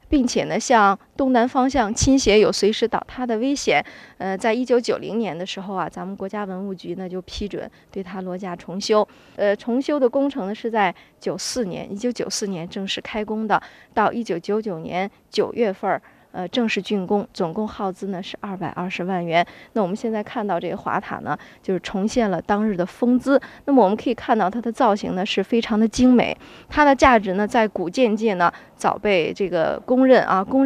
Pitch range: 195-250 Hz